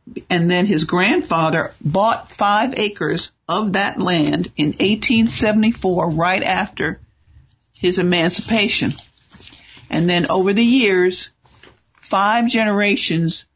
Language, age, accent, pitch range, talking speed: English, 60-79, American, 165-210 Hz, 100 wpm